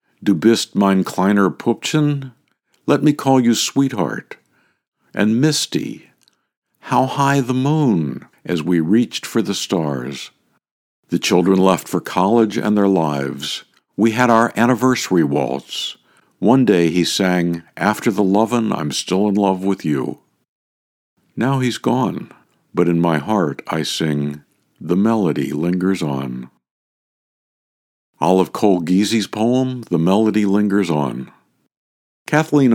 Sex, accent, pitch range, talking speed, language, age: male, American, 85-115 Hz, 130 wpm, English, 60-79